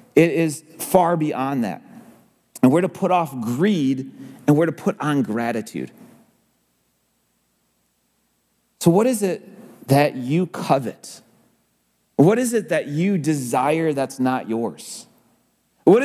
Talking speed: 125 wpm